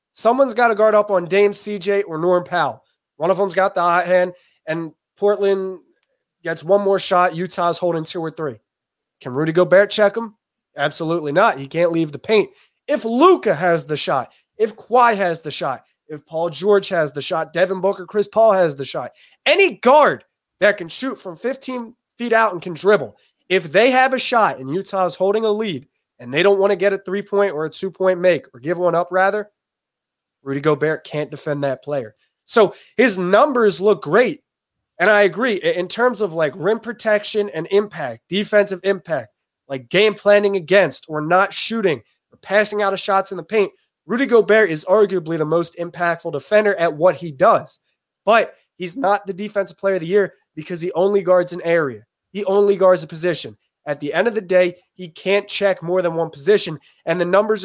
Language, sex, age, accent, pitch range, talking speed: English, male, 20-39, American, 170-205 Hz, 200 wpm